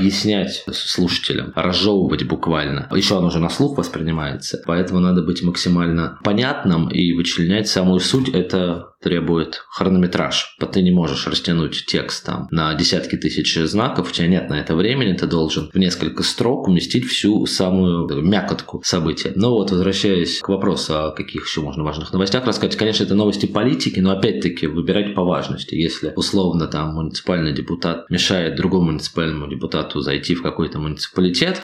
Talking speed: 155 wpm